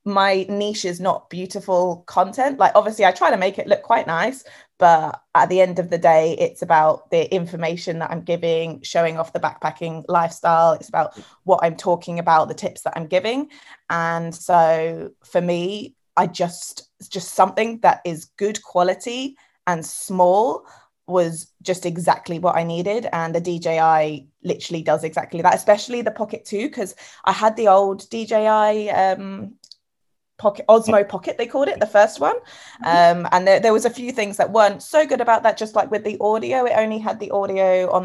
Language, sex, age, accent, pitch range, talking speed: English, female, 20-39, British, 170-210 Hz, 185 wpm